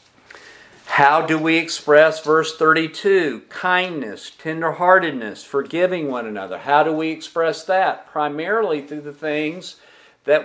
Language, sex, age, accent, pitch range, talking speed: English, male, 50-69, American, 145-190 Hz, 120 wpm